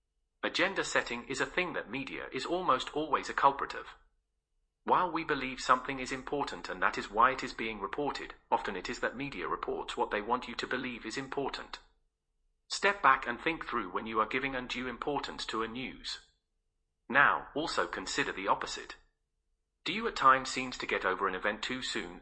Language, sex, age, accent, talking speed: English, male, 40-59, British, 195 wpm